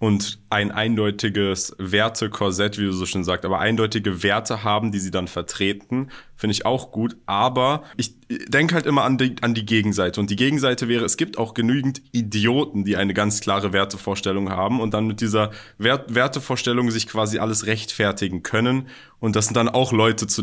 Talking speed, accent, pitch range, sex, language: 180 wpm, German, 100-120 Hz, male, German